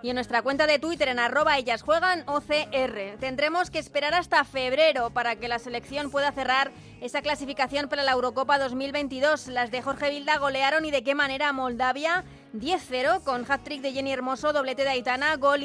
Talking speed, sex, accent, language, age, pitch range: 175 wpm, female, Spanish, Spanish, 20-39, 260-300 Hz